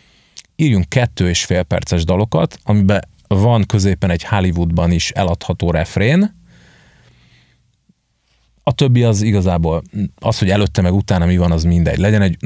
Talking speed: 140 wpm